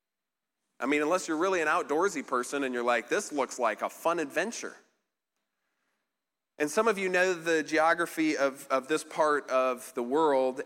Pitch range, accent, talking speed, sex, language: 120-160 Hz, American, 175 wpm, male, English